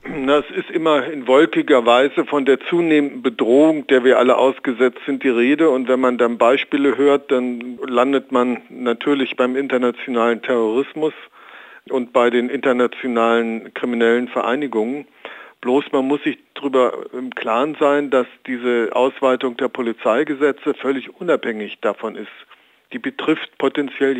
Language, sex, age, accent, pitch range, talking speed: German, male, 50-69, German, 125-145 Hz, 140 wpm